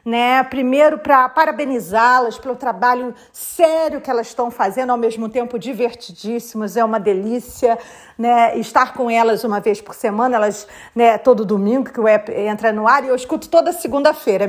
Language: English